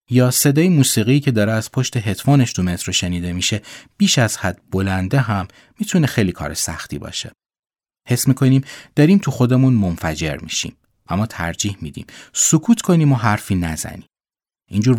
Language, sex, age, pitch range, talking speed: Persian, male, 30-49, 85-135 Hz, 150 wpm